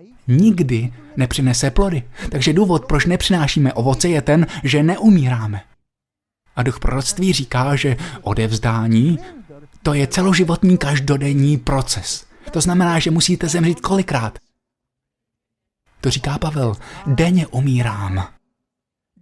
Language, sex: Slovak, male